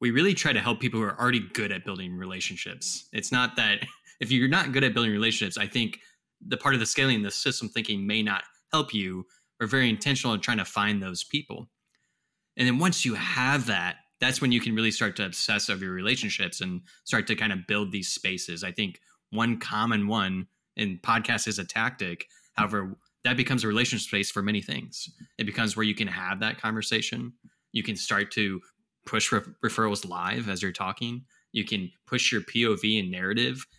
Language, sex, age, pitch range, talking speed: English, male, 20-39, 100-125 Hz, 210 wpm